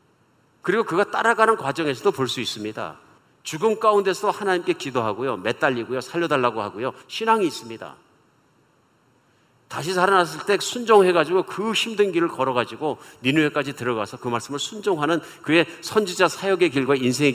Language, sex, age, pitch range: Korean, male, 50-69, 135-195 Hz